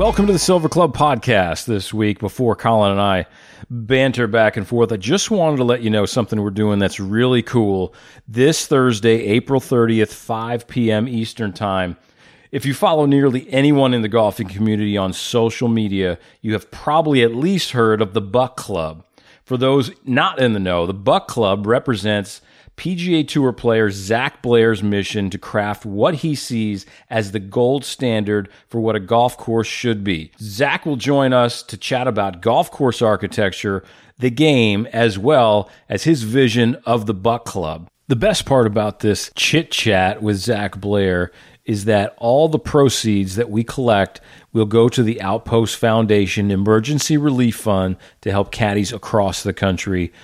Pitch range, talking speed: 100-125 Hz, 175 wpm